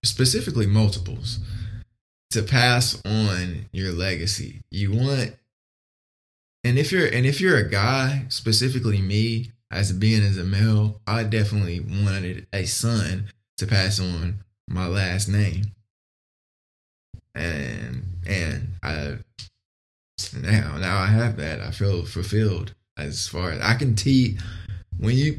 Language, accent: English, American